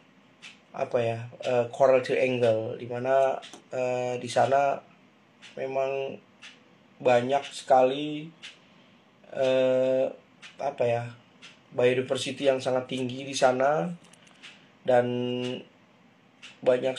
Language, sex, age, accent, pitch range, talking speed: Indonesian, male, 20-39, native, 125-140 Hz, 80 wpm